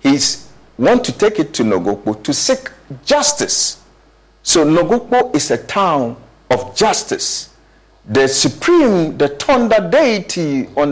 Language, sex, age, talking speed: English, male, 50-69, 125 wpm